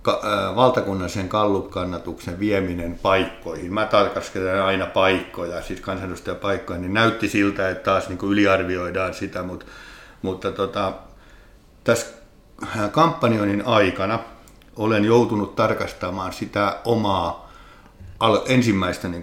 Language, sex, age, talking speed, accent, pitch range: Finnish, male, 60-79, 95 wpm, native, 95-110 Hz